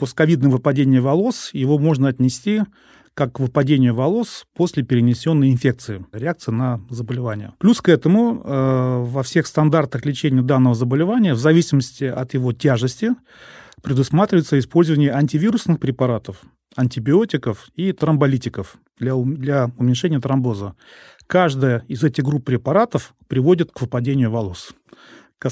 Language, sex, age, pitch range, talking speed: Russian, male, 30-49, 125-155 Hz, 120 wpm